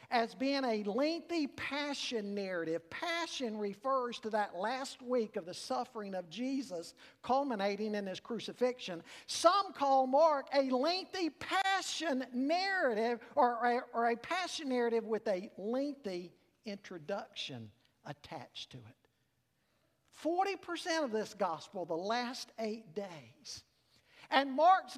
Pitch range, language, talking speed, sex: 200-275 Hz, English, 120 wpm, male